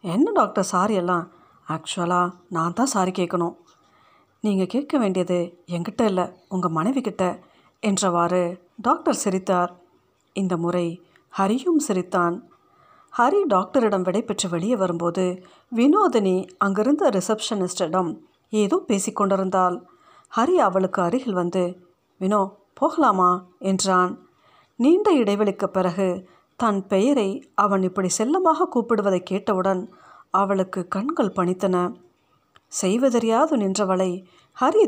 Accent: native